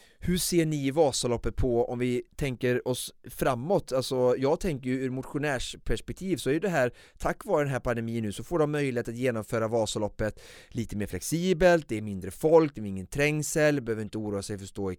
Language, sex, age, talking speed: Swedish, male, 30-49, 210 wpm